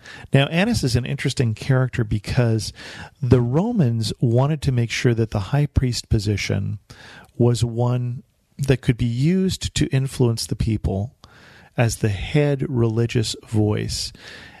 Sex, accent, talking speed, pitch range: male, American, 135 wpm, 110-135 Hz